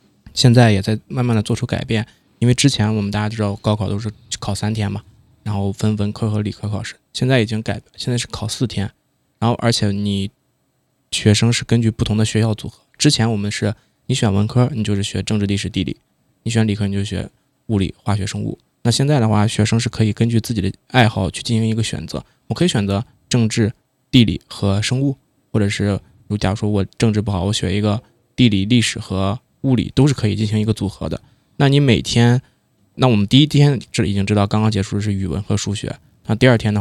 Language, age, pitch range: Chinese, 20-39, 100-120 Hz